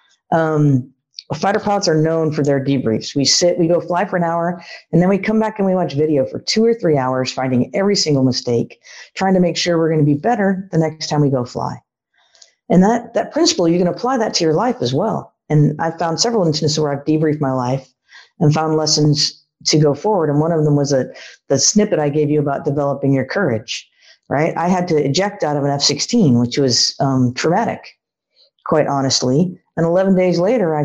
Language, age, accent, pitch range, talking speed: English, 50-69, American, 145-190 Hz, 220 wpm